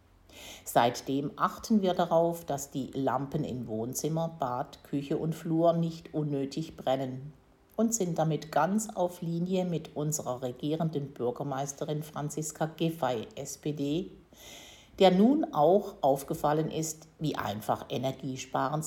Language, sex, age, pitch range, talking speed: German, female, 60-79, 135-190 Hz, 120 wpm